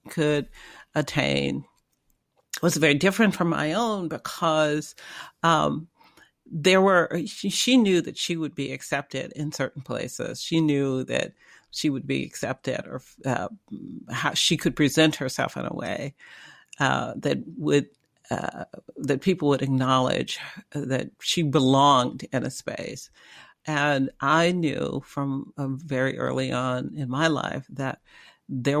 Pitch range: 135-165 Hz